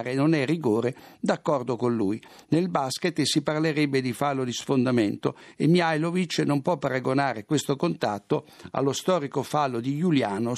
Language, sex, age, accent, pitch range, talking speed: Italian, male, 60-79, native, 135-170 Hz, 155 wpm